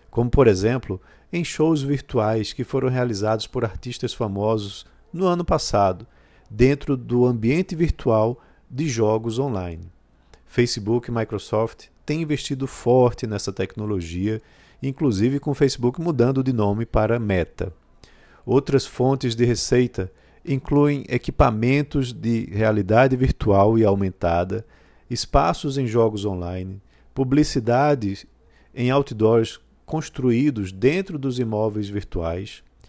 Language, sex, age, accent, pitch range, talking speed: Portuguese, male, 50-69, Brazilian, 105-140 Hz, 115 wpm